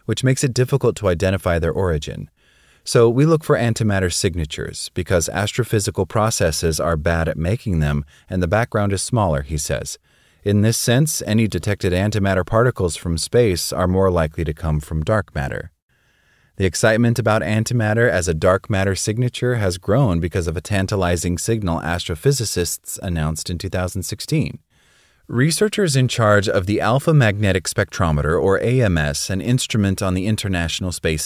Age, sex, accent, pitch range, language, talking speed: 30-49, male, American, 85-115 Hz, English, 155 wpm